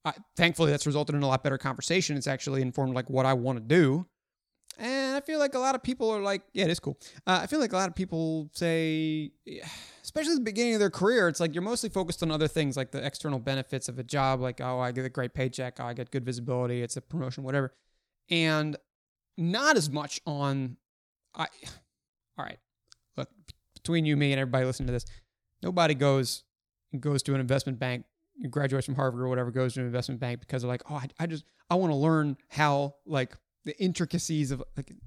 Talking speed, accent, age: 220 wpm, American, 20-39